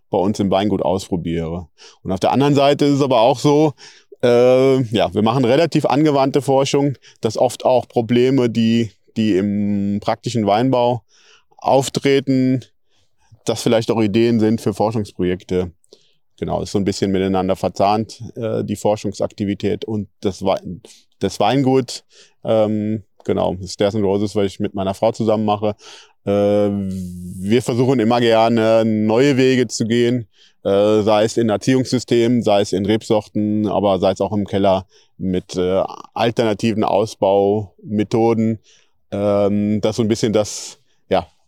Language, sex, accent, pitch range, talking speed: German, male, German, 100-120 Hz, 150 wpm